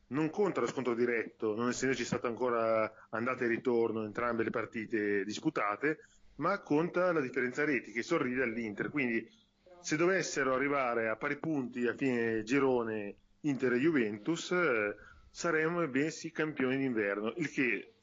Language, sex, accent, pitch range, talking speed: Italian, male, native, 110-140 Hz, 145 wpm